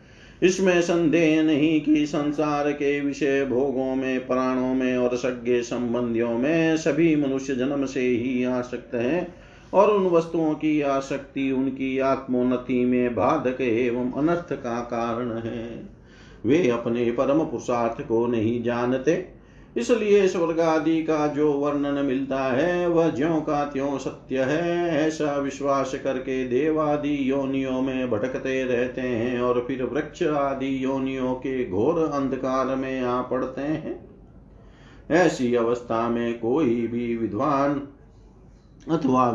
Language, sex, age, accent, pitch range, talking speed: Hindi, male, 50-69, native, 120-150 Hz, 125 wpm